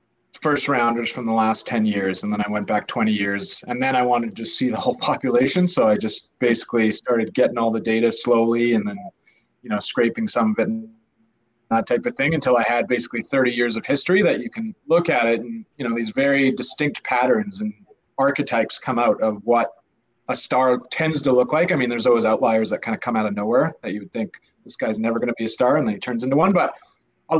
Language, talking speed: English, 245 wpm